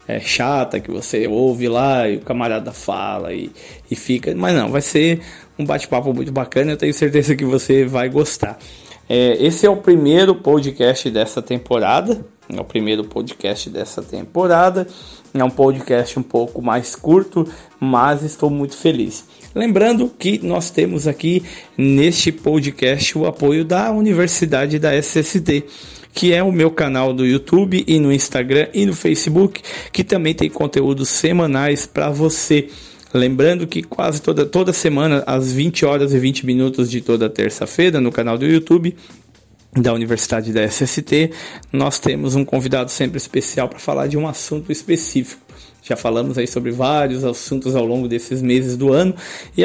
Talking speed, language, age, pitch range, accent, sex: 160 wpm, Portuguese, 20-39, 130-160 Hz, Brazilian, male